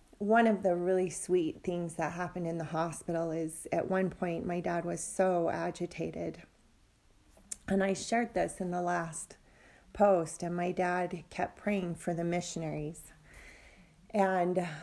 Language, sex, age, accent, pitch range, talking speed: English, female, 40-59, American, 165-185 Hz, 150 wpm